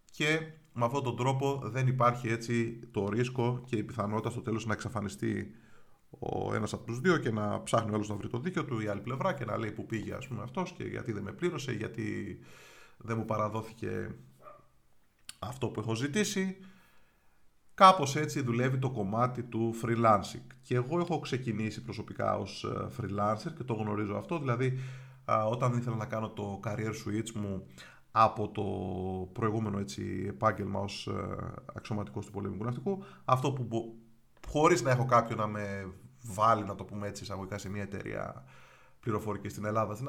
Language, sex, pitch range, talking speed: Greek, male, 105-130 Hz, 170 wpm